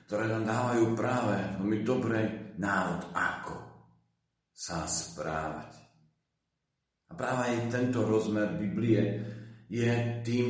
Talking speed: 105 wpm